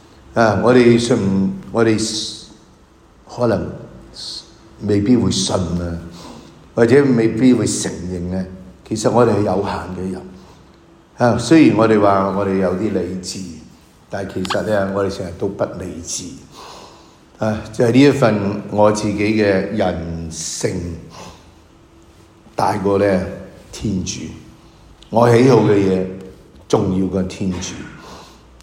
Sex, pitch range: male, 90-115 Hz